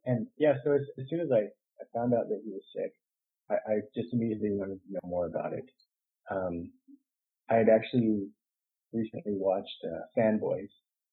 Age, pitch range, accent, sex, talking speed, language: 30-49, 95-120 Hz, American, male, 180 wpm, English